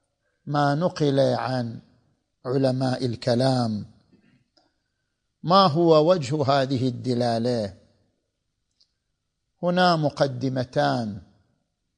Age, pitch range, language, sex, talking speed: 50-69, 120-160 Hz, Arabic, male, 60 wpm